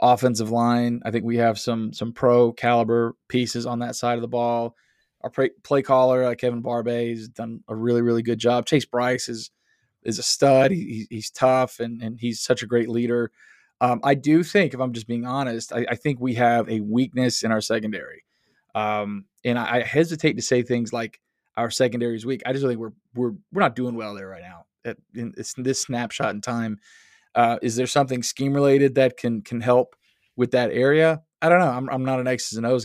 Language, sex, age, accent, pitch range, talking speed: English, male, 20-39, American, 115-135 Hz, 220 wpm